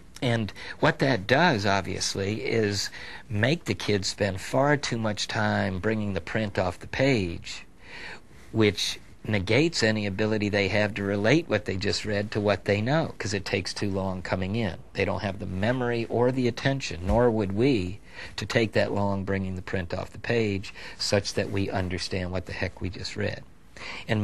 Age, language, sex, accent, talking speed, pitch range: 50-69, English, male, American, 185 wpm, 95-110 Hz